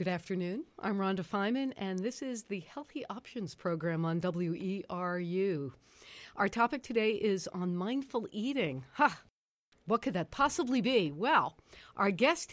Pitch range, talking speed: 175-225 Hz, 145 wpm